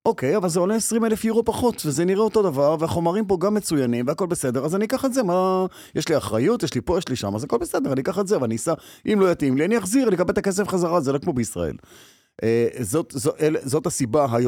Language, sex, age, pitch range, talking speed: Hebrew, male, 30-49, 120-190 Hz, 205 wpm